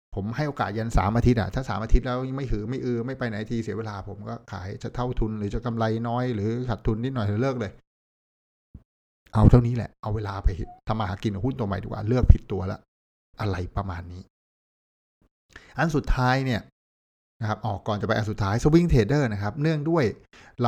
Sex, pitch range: male, 105-135 Hz